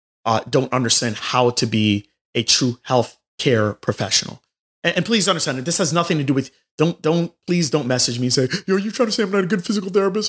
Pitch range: 120-165 Hz